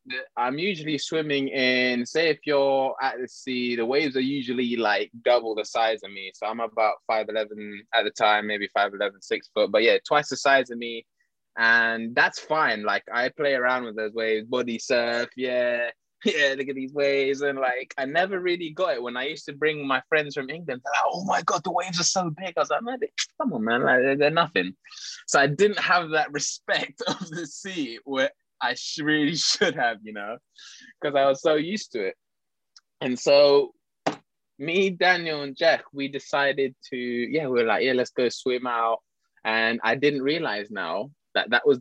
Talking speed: 200 wpm